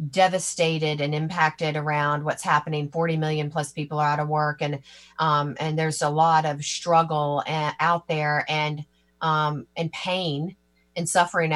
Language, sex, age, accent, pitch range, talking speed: English, female, 40-59, American, 150-175 Hz, 155 wpm